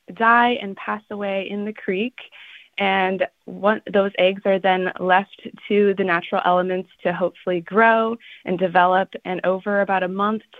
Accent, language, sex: American, English, female